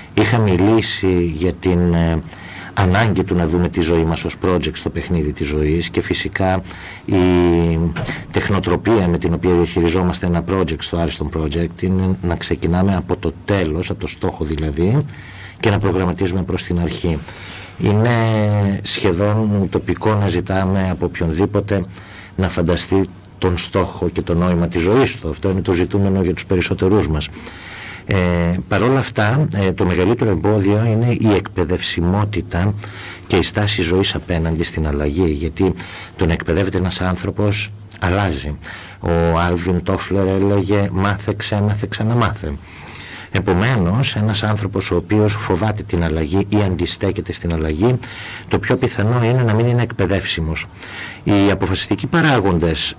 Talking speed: 145 wpm